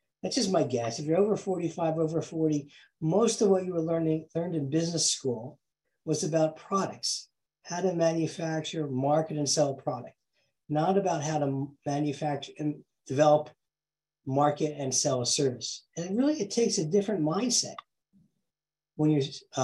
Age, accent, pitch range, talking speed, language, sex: 50-69, American, 145-175 Hz, 160 wpm, English, male